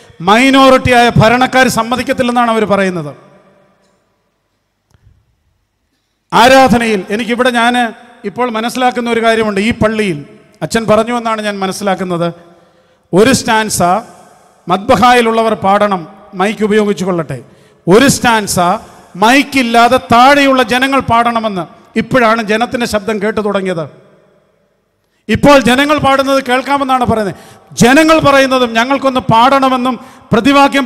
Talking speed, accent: 80 wpm, Indian